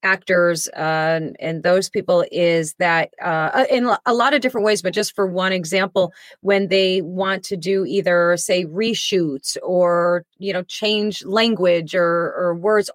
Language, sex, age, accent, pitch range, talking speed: English, female, 30-49, American, 175-215 Hz, 160 wpm